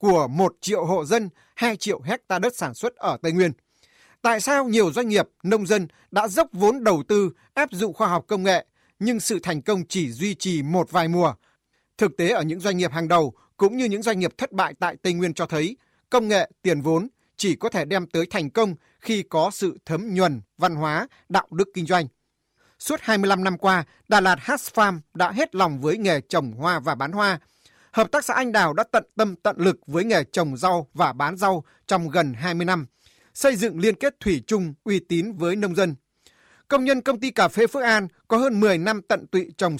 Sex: male